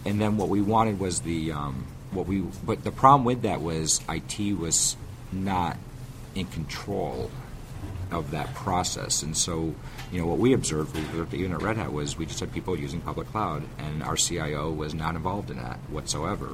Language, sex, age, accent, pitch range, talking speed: English, male, 50-69, American, 80-115 Hz, 190 wpm